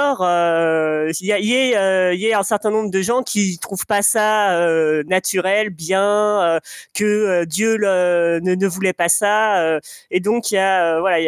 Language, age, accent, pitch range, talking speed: French, 20-39, French, 185-230 Hz, 190 wpm